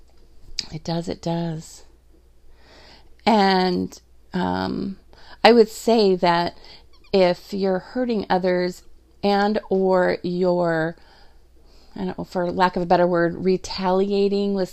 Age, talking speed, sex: 40-59, 100 wpm, female